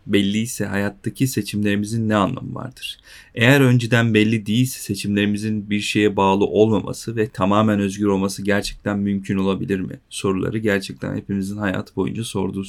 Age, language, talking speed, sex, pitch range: 40-59, Turkish, 135 wpm, male, 100-120 Hz